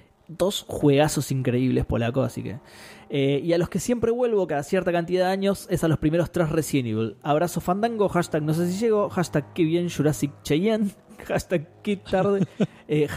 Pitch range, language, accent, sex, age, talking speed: 140-195 Hz, Spanish, Argentinian, male, 20-39, 180 wpm